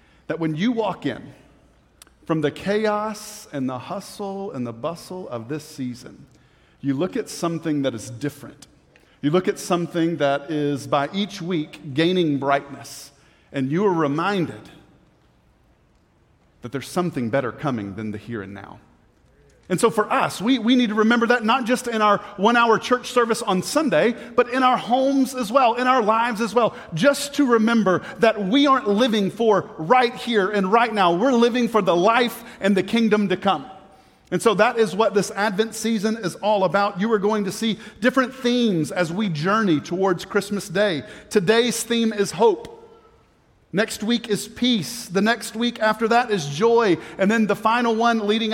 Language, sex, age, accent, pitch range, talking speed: English, male, 40-59, American, 165-225 Hz, 180 wpm